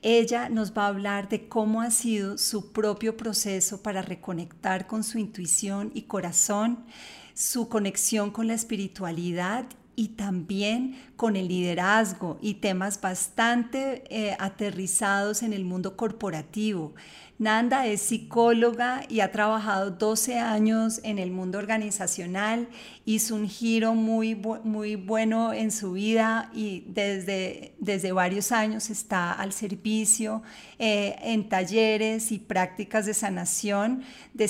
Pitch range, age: 195-225 Hz, 40-59